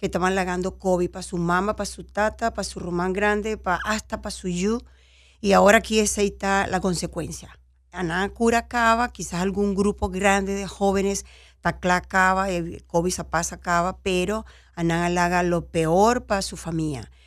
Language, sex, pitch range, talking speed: English, female, 170-200 Hz, 165 wpm